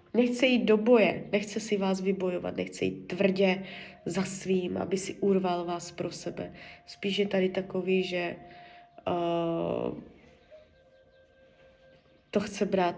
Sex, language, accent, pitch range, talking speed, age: female, Czech, native, 175-200 Hz, 125 wpm, 20-39